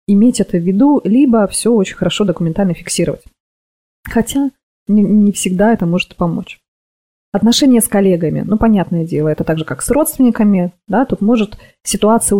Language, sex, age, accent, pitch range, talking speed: Russian, female, 20-39, native, 175-220 Hz, 150 wpm